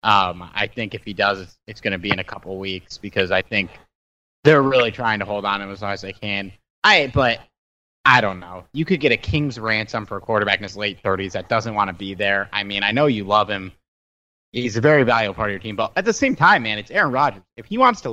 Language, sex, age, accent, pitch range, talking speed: English, male, 30-49, American, 100-130 Hz, 265 wpm